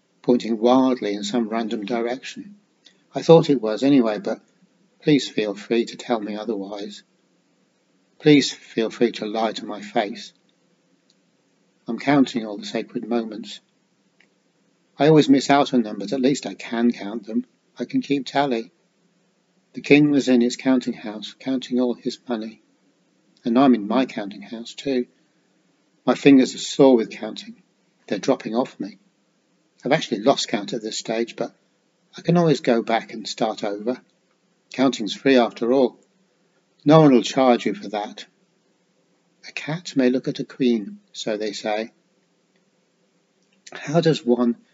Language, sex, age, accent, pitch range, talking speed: English, male, 50-69, British, 110-130 Hz, 160 wpm